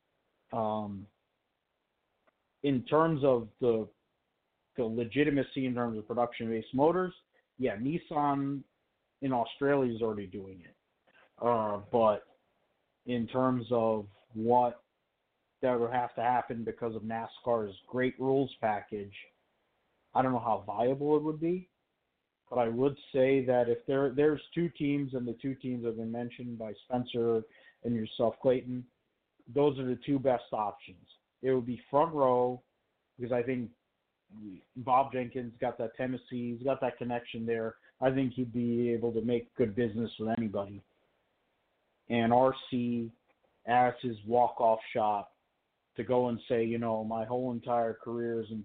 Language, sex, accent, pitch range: English, male, American, 110-130 Hz